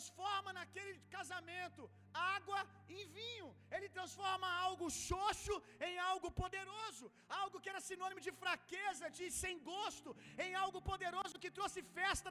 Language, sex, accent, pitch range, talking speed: Gujarati, male, Brazilian, 315-380 Hz, 135 wpm